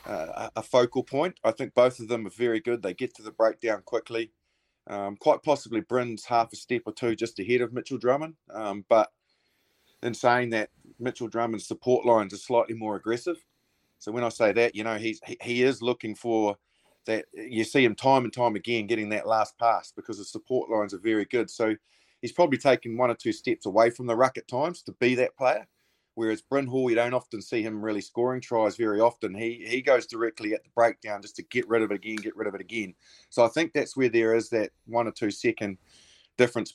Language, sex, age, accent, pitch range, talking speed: English, male, 30-49, Australian, 110-125 Hz, 225 wpm